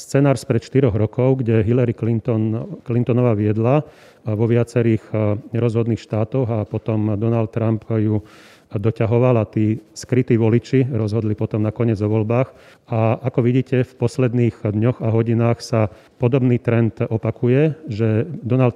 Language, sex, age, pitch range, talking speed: Slovak, male, 40-59, 110-125 Hz, 140 wpm